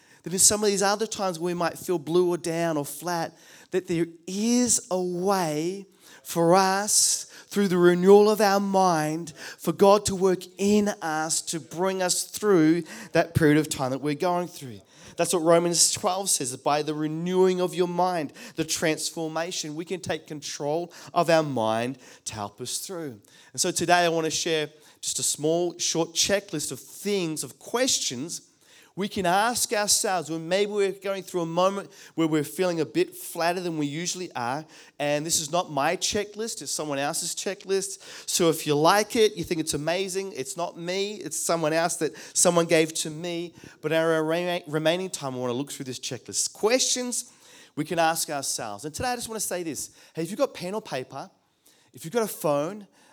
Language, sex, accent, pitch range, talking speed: English, male, Australian, 155-190 Hz, 195 wpm